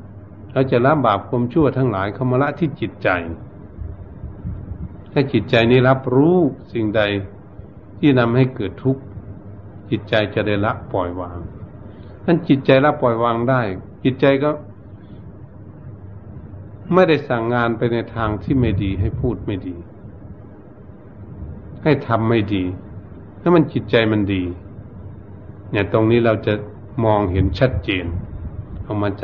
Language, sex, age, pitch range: Thai, male, 60-79, 100-130 Hz